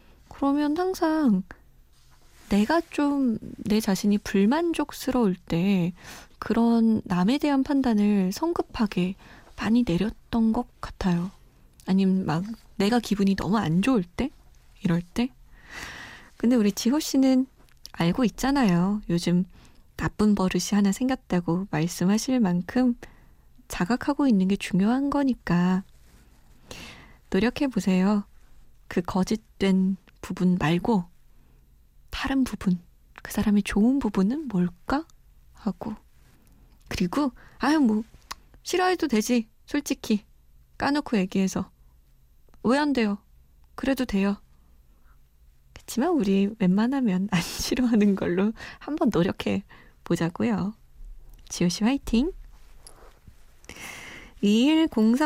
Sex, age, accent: female, 20-39, native